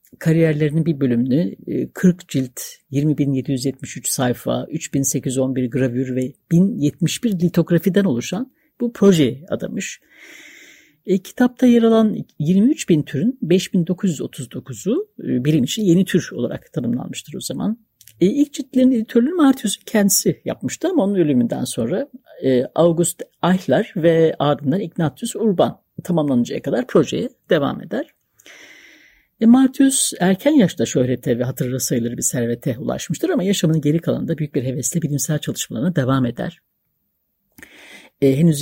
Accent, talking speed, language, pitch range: native, 115 wpm, Turkish, 135-200 Hz